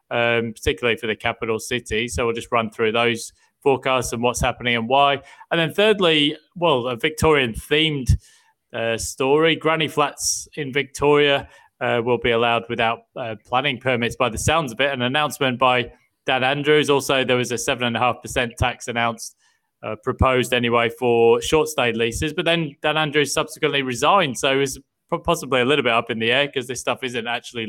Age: 20-39